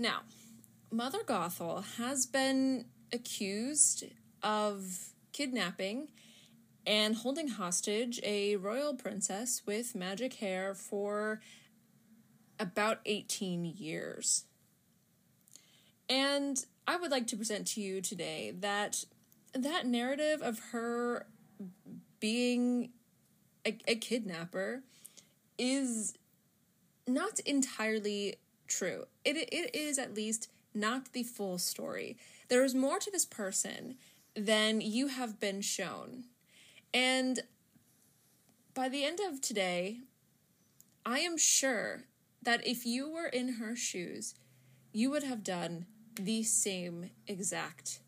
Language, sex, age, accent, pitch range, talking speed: English, female, 20-39, American, 195-255 Hz, 105 wpm